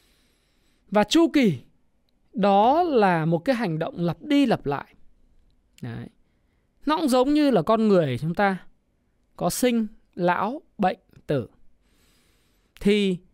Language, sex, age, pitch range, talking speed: Vietnamese, male, 20-39, 150-225 Hz, 130 wpm